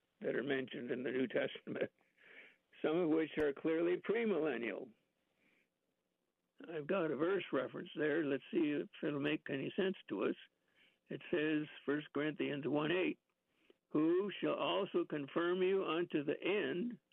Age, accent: 60-79, American